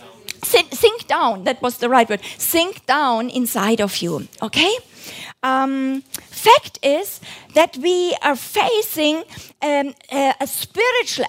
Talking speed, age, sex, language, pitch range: 130 wpm, 50-69, female, German, 265-365 Hz